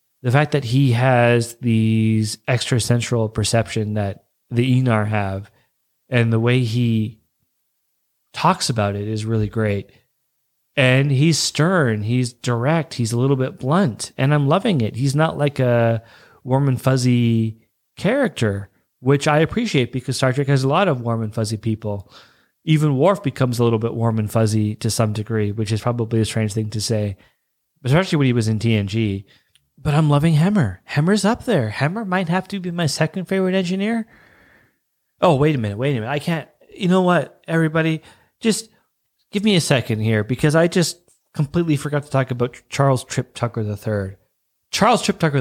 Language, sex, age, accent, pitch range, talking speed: English, male, 30-49, American, 110-160 Hz, 180 wpm